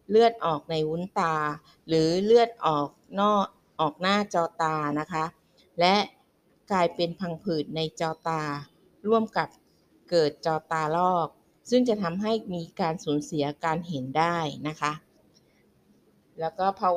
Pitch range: 155-190 Hz